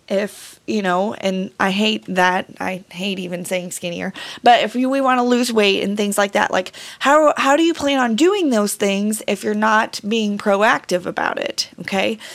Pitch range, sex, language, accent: 190-225 Hz, female, English, American